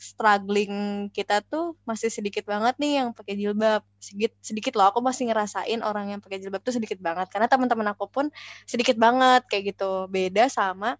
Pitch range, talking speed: 195-240 Hz, 180 wpm